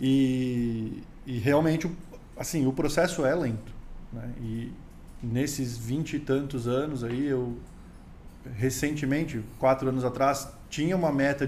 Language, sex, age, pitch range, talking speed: Portuguese, male, 20-39, 125-155 Hz, 125 wpm